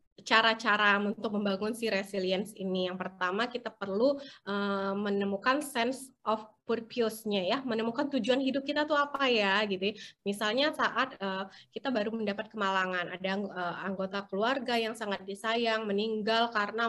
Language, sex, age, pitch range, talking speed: Indonesian, female, 20-39, 205-260 Hz, 140 wpm